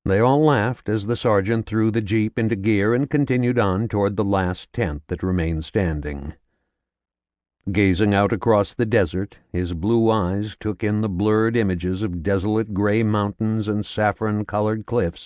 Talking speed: 160 wpm